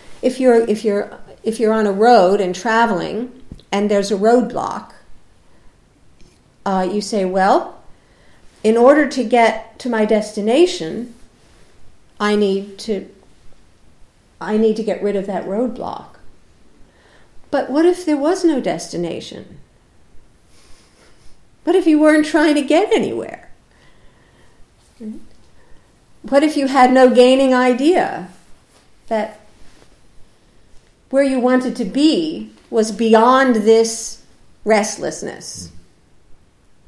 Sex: female